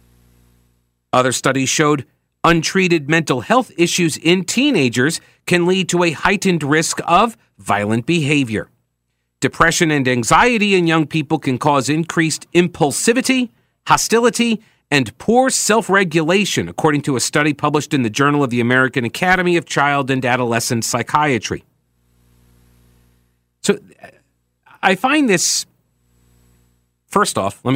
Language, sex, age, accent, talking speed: English, male, 40-59, American, 120 wpm